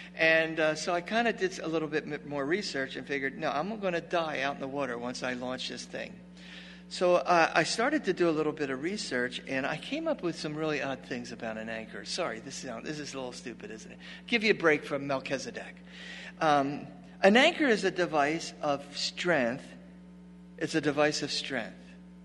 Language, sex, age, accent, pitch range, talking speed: English, male, 50-69, American, 115-185 Hz, 225 wpm